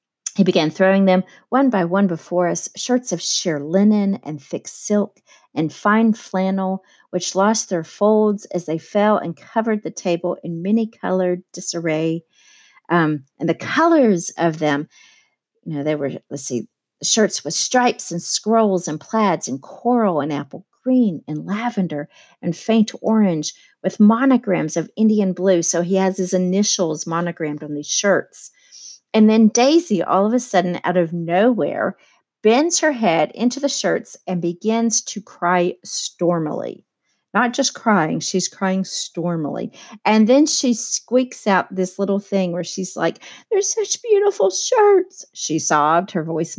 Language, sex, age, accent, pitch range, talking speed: English, female, 50-69, American, 170-245 Hz, 155 wpm